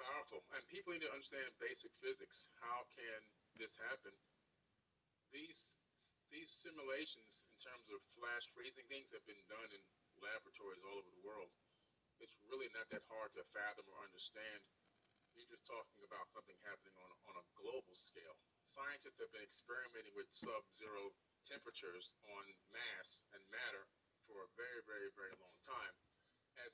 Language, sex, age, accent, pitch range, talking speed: English, male, 30-49, American, 365-475 Hz, 155 wpm